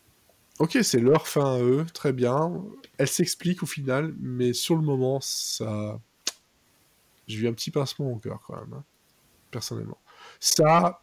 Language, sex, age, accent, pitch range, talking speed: French, male, 20-39, French, 110-140 Hz, 160 wpm